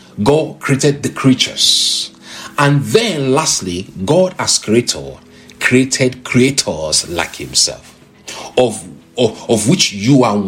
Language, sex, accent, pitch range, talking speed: English, male, Nigerian, 105-170 Hz, 110 wpm